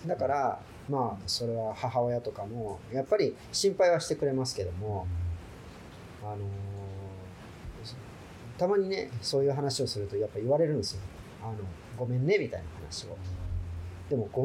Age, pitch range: 40-59, 100-140 Hz